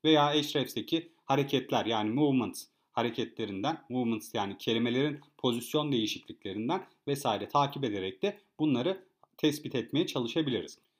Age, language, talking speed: 40-59, Turkish, 105 wpm